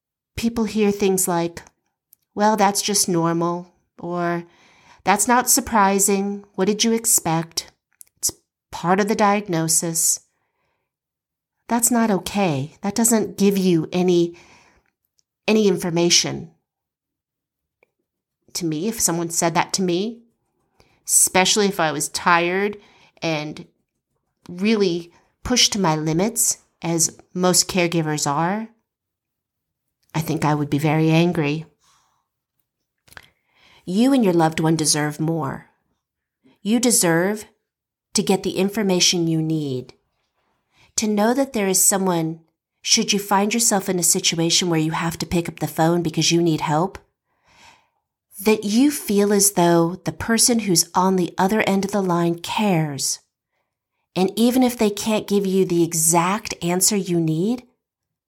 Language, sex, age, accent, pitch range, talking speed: English, female, 40-59, American, 165-210 Hz, 135 wpm